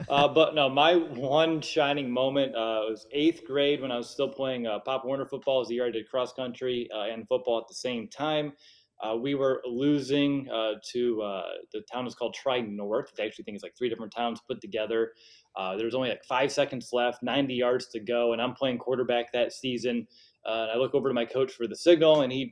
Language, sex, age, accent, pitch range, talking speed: English, male, 20-39, American, 115-145 Hz, 230 wpm